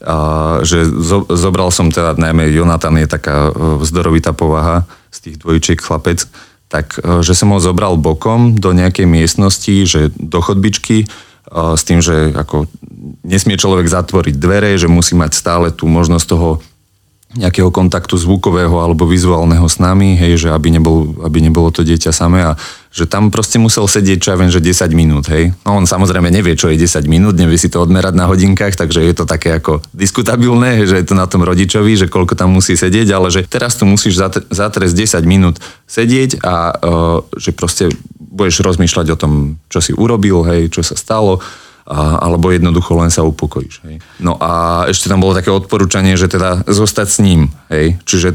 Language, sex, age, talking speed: Slovak, male, 30-49, 180 wpm